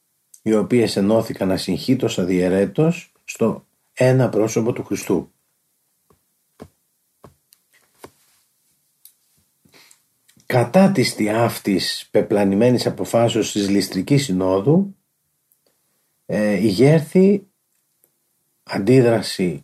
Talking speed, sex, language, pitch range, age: 65 wpm, male, Greek, 100-145 Hz, 40-59